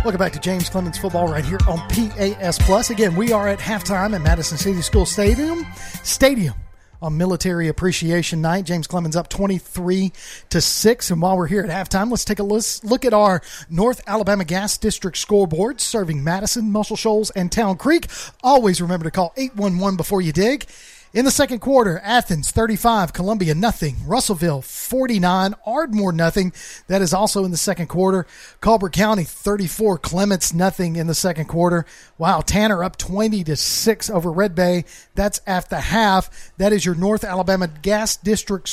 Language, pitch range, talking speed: English, 180-215 Hz, 175 wpm